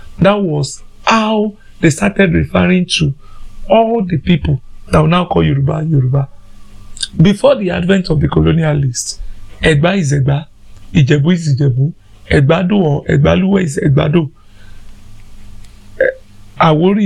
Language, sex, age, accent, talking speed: English, male, 50-69, Nigerian, 120 wpm